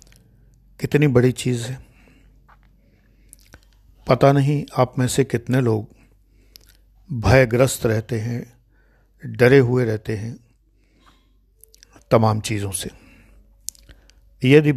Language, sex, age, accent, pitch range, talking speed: Hindi, male, 60-79, native, 105-125 Hz, 90 wpm